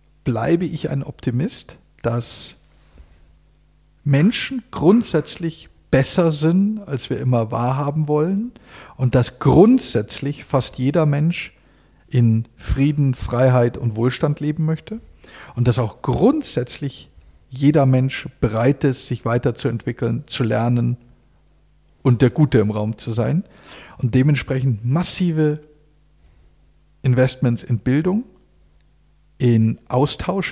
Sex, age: male, 50-69